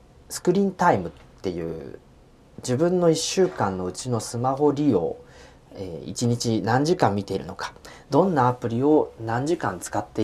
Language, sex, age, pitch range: Japanese, male, 40-59, 95-150 Hz